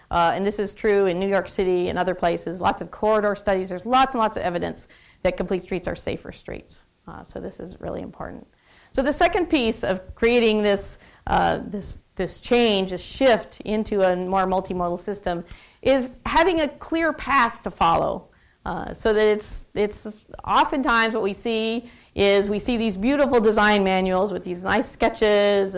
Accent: American